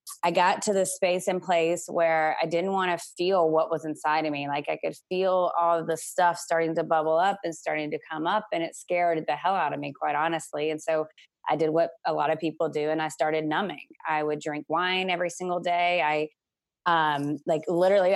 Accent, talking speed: American, 230 wpm